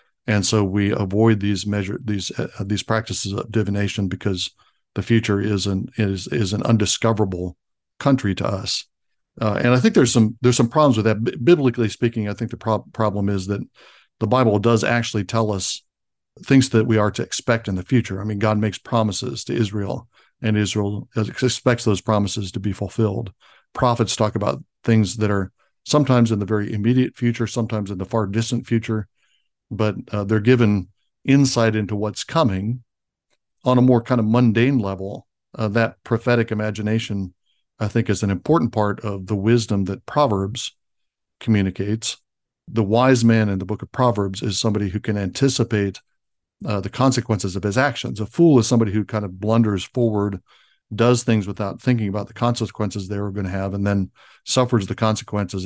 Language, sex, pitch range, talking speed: English, male, 100-115 Hz, 180 wpm